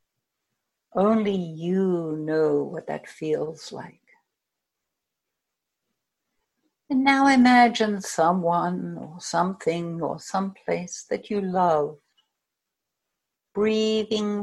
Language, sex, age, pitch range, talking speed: English, female, 60-79, 175-225 Hz, 85 wpm